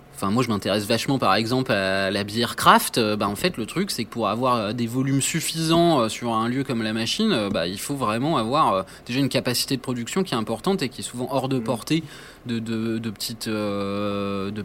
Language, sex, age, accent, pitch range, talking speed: French, male, 20-39, French, 115-150 Hz, 205 wpm